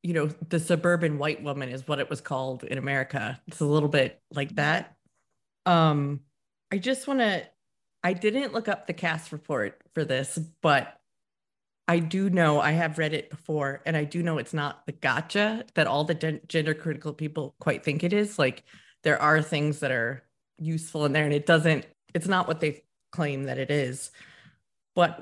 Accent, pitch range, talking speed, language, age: American, 150-180 Hz, 195 wpm, English, 30-49